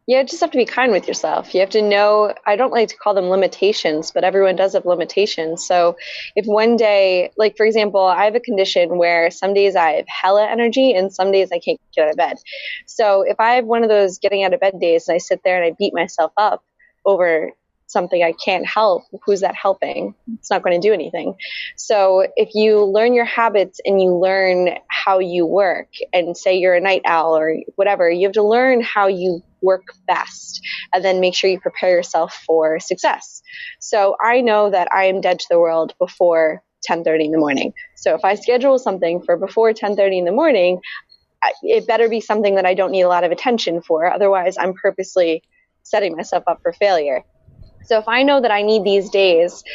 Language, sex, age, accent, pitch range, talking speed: English, female, 20-39, American, 180-215 Hz, 215 wpm